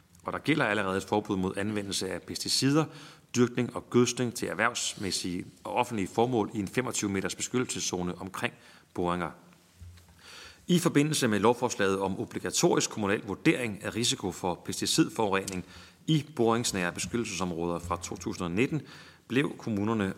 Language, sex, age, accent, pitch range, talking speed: Danish, male, 30-49, native, 90-115 Hz, 130 wpm